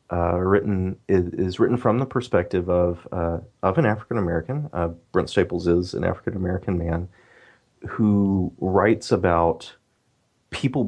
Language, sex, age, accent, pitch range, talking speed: English, male, 30-49, American, 85-100 Hz, 120 wpm